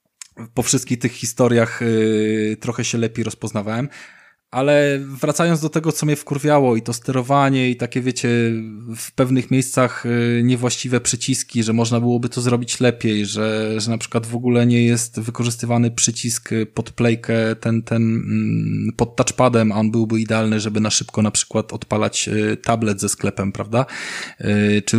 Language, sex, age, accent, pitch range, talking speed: Polish, male, 20-39, native, 105-130 Hz, 145 wpm